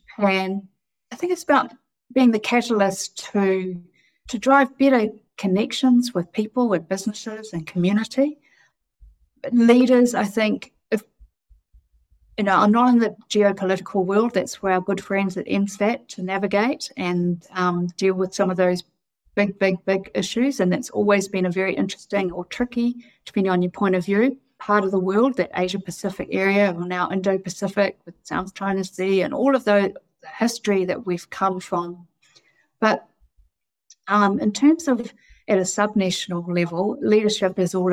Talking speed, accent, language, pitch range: 165 wpm, Australian, English, 180-220 Hz